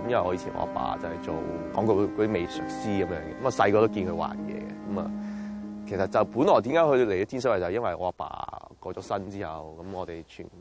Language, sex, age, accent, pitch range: Chinese, male, 20-39, native, 85-110 Hz